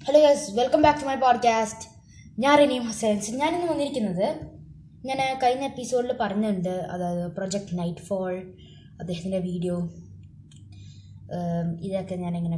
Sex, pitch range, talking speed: female, 175-220 Hz, 115 wpm